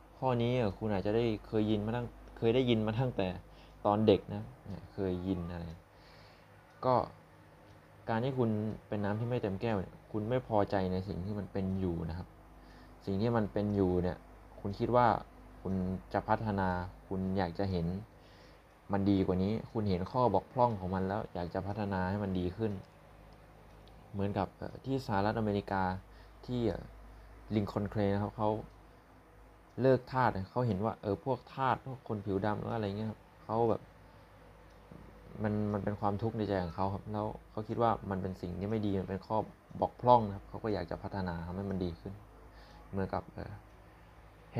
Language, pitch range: Thai, 95-110 Hz